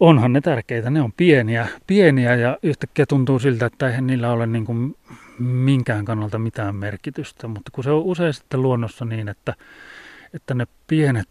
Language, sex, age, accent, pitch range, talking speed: Finnish, male, 30-49, native, 110-130 Hz, 170 wpm